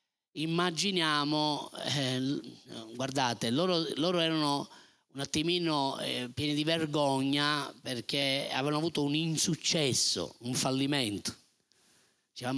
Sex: male